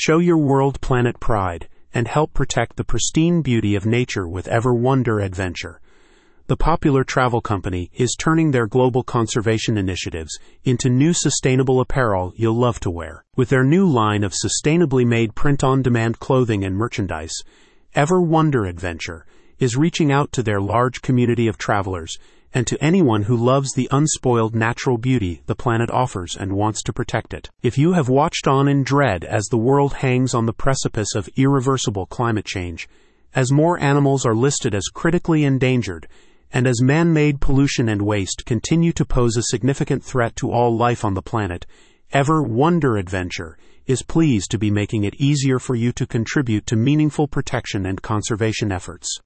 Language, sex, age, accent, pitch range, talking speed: English, male, 30-49, American, 105-140 Hz, 170 wpm